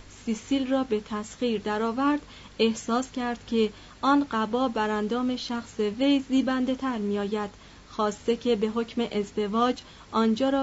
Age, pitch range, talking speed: 30-49, 210-255 Hz, 125 wpm